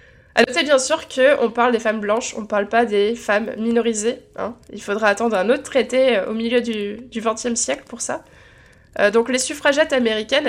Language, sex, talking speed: French, female, 200 wpm